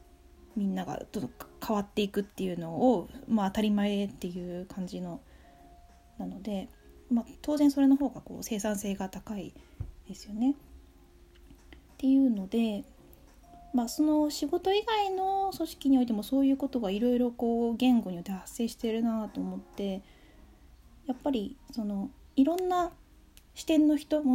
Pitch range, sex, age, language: 200-275 Hz, female, 20-39, Japanese